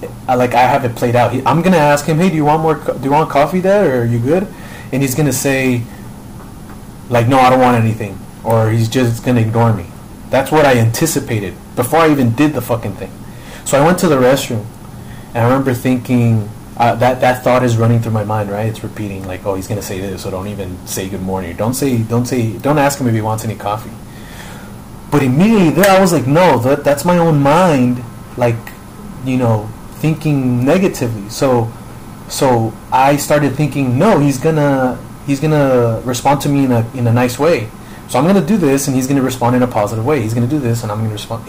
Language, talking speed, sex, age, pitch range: English, 225 wpm, male, 30-49, 115-145 Hz